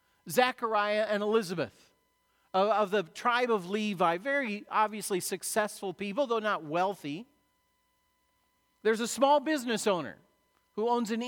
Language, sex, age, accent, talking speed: English, male, 40-59, American, 130 wpm